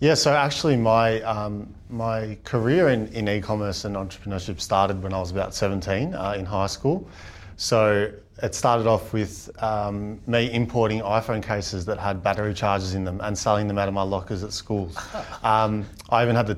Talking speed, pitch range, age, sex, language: 190 wpm, 100-110 Hz, 30-49, male, English